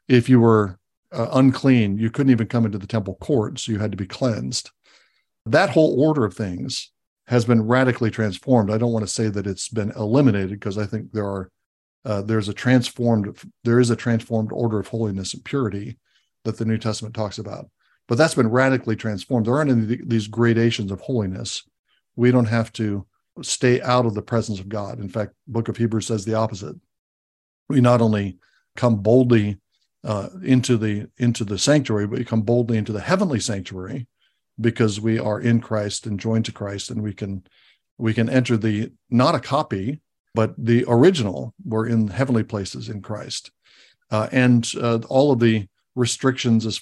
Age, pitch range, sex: 60-79, 105-120 Hz, male